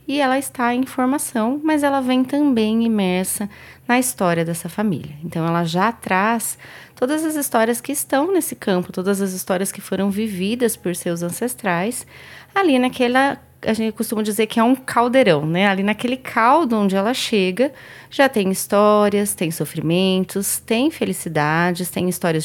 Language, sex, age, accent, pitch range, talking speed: Portuguese, female, 20-39, Brazilian, 195-265 Hz, 160 wpm